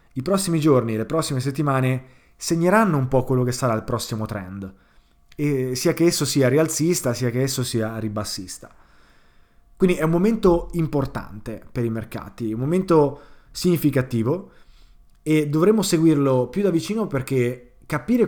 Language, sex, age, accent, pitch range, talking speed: Italian, male, 30-49, native, 115-150 Hz, 145 wpm